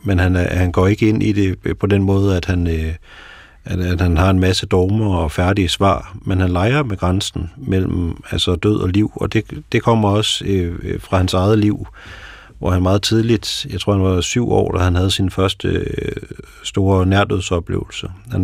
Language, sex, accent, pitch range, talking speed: Danish, male, native, 90-100 Hz, 185 wpm